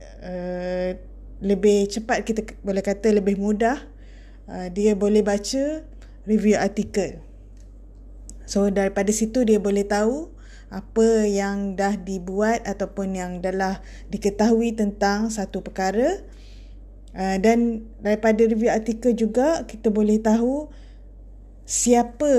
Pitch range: 195-225 Hz